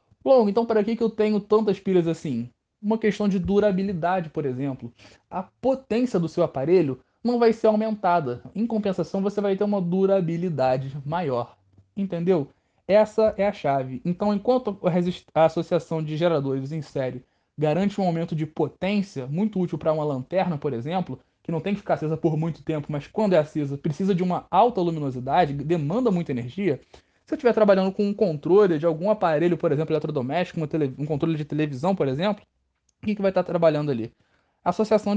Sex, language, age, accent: male, Portuguese, 20-39, Brazilian